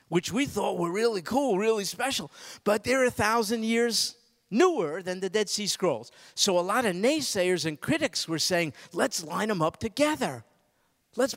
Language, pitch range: English, 170-240 Hz